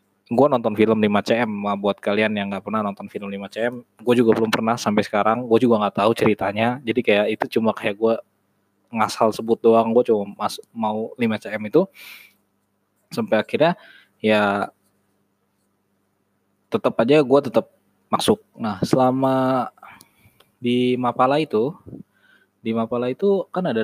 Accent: native